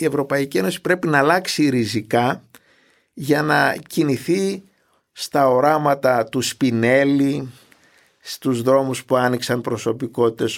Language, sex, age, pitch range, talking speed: Greek, male, 50-69, 120-145 Hz, 110 wpm